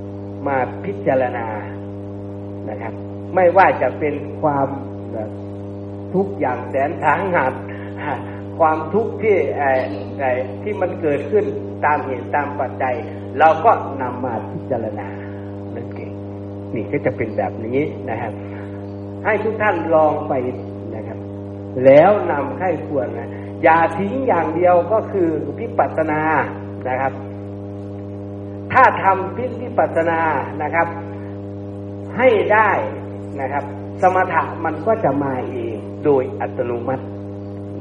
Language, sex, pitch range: Thai, male, 100-140 Hz